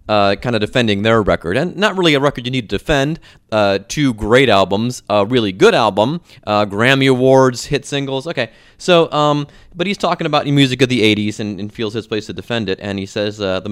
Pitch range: 105-150 Hz